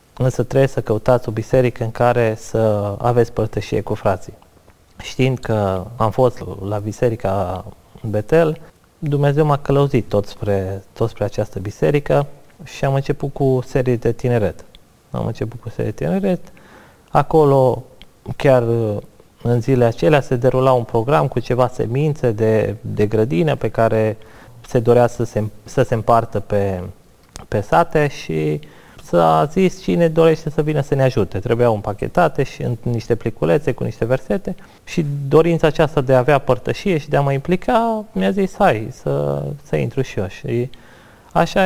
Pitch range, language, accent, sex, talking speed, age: 105-140 Hz, Romanian, native, male, 160 wpm, 20-39